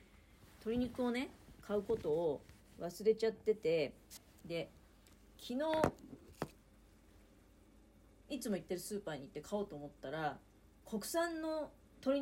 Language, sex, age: Japanese, female, 40-59